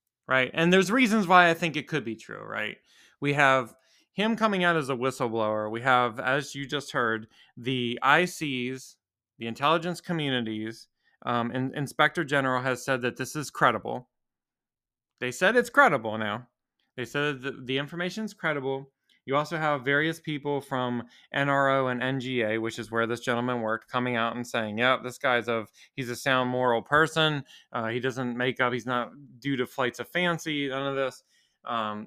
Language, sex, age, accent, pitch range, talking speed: English, male, 20-39, American, 120-150 Hz, 180 wpm